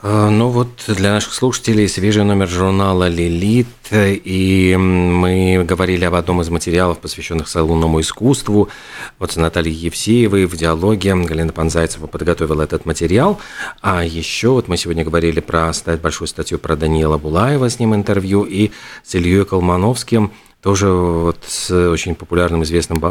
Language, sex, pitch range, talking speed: Russian, male, 85-105 Hz, 145 wpm